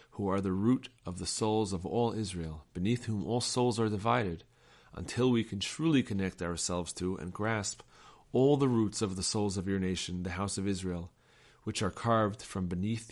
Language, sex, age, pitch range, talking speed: English, male, 40-59, 95-125 Hz, 195 wpm